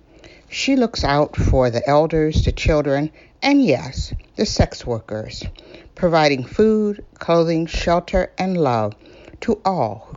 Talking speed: 130 wpm